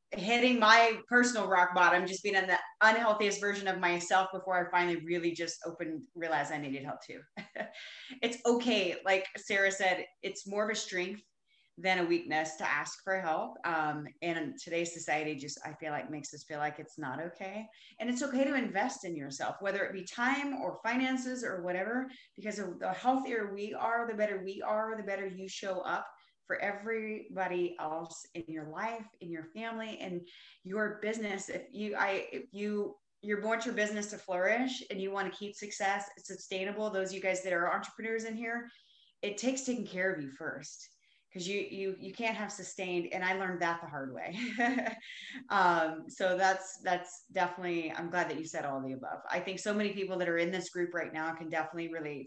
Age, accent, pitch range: 30-49, American, 170-215 Hz